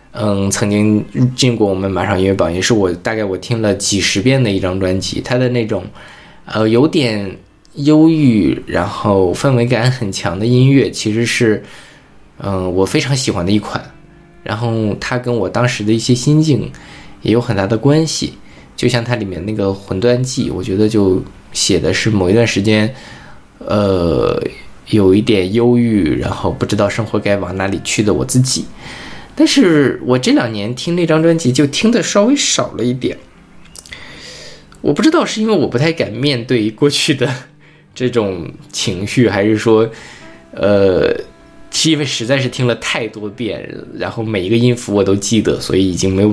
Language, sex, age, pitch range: Chinese, male, 20-39, 100-125 Hz